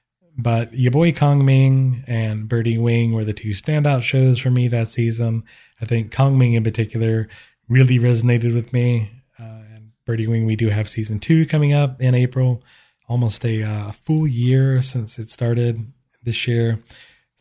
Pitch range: 110-135 Hz